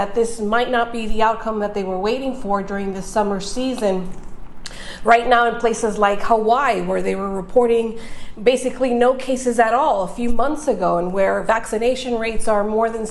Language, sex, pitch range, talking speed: English, female, 210-250 Hz, 190 wpm